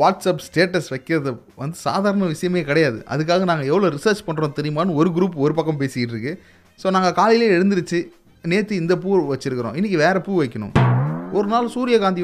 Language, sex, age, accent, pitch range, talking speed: Tamil, male, 30-49, native, 150-225 Hz, 160 wpm